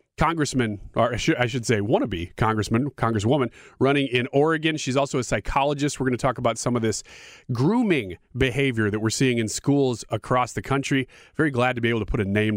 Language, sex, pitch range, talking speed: English, male, 115-155 Hz, 200 wpm